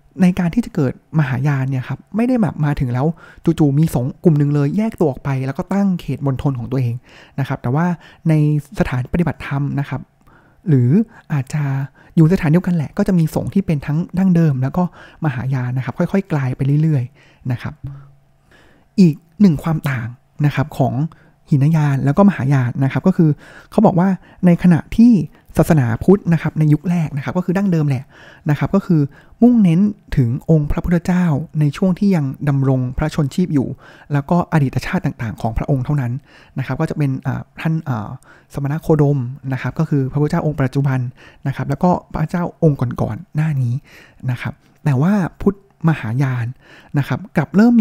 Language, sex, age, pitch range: Thai, male, 20-39, 135-175 Hz